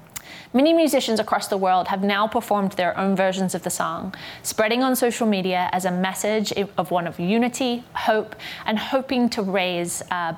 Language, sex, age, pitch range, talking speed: English, female, 20-39, 190-255 Hz, 180 wpm